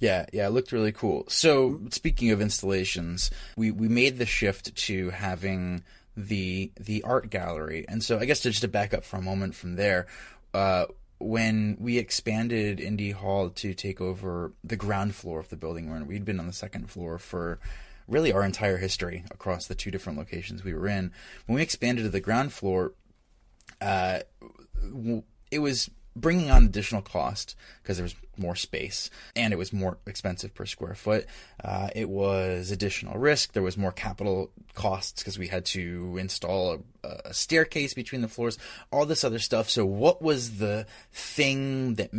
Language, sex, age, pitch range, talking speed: English, male, 20-39, 95-115 Hz, 180 wpm